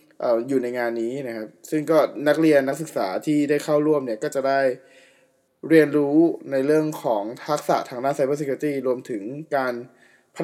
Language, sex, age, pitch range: Thai, male, 20-39, 120-150 Hz